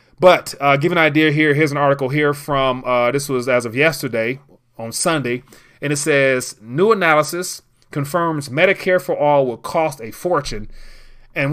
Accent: American